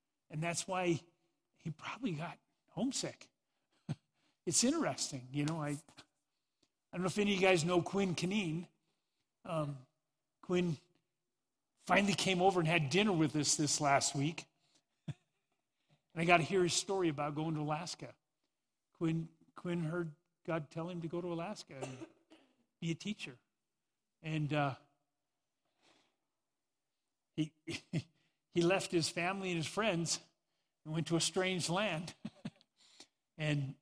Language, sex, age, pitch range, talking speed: English, male, 50-69, 155-190 Hz, 140 wpm